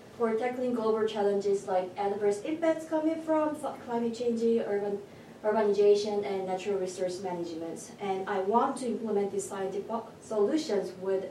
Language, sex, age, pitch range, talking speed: English, female, 20-39, 185-220 Hz, 140 wpm